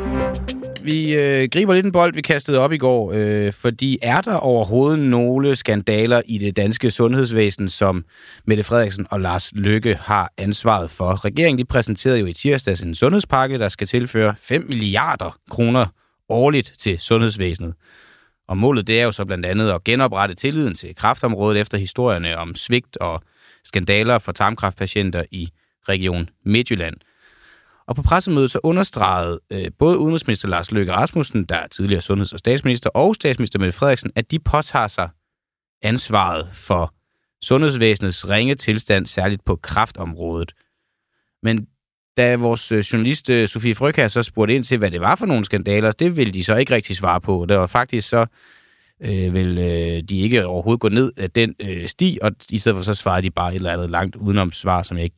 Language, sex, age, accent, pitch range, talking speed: Danish, male, 30-49, native, 95-125 Hz, 175 wpm